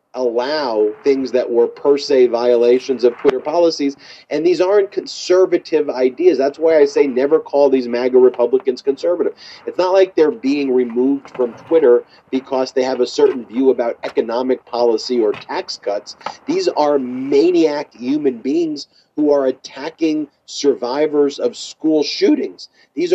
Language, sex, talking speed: English, male, 150 wpm